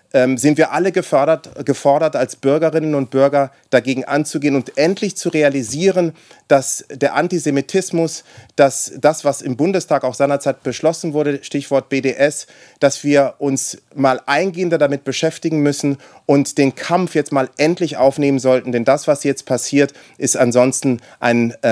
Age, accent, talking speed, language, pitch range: 30-49, German, 145 wpm, German, 130-150 Hz